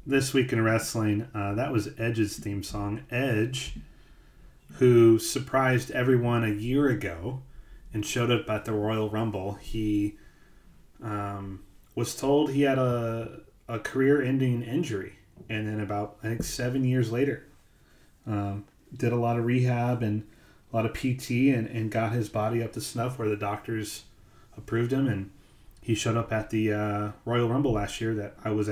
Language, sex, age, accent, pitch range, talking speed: English, male, 30-49, American, 105-125 Hz, 165 wpm